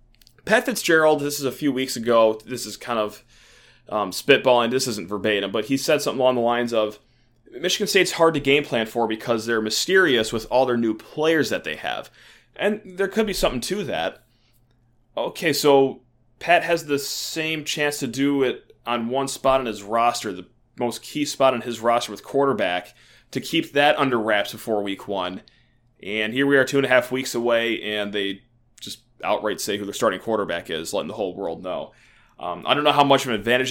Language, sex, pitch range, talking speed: English, male, 115-145 Hz, 210 wpm